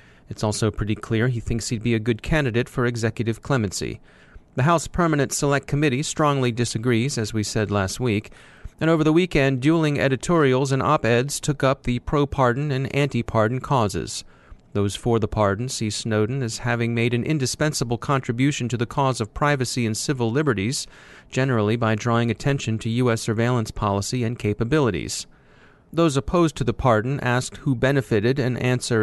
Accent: American